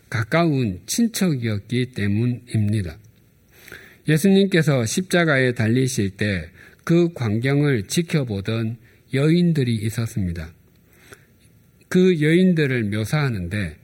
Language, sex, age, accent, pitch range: Korean, male, 50-69, native, 105-150 Hz